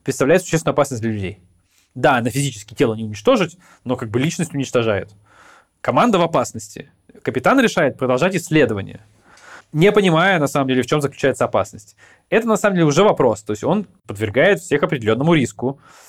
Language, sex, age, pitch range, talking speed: Russian, male, 20-39, 120-160 Hz, 170 wpm